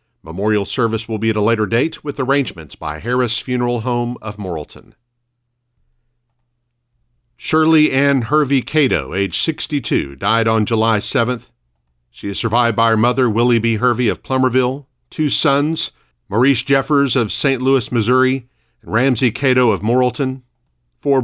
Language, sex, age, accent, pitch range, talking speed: English, male, 50-69, American, 105-135 Hz, 145 wpm